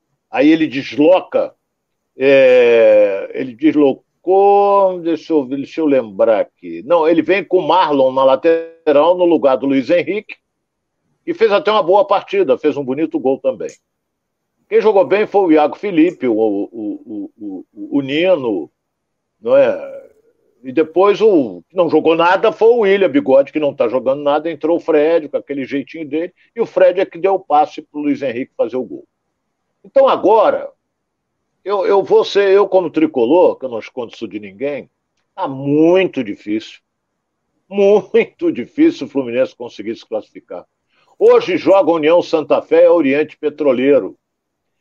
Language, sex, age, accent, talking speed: Portuguese, male, 60-79, Brazilian, 160 wpm